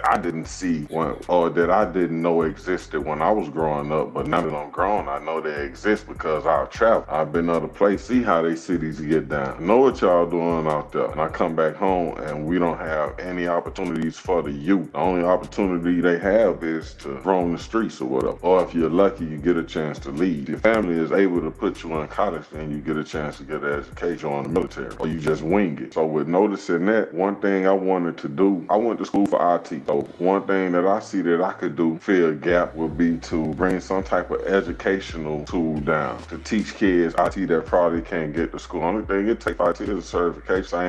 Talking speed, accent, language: 240 wpm, American, English